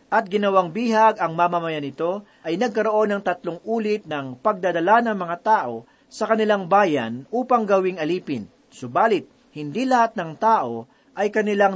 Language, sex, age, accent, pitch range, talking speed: Filipino, male, 40-59, native, 155-215 Hz, 150 wpm